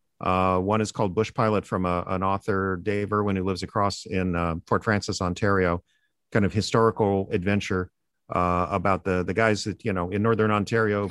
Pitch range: 95-110 Hz